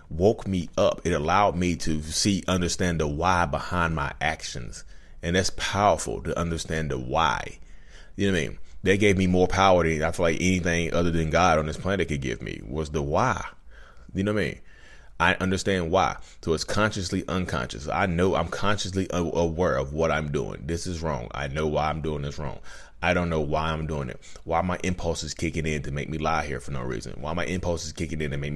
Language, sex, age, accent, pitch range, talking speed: English, male, 30-49, American, 75-90 Hz, 225 wpm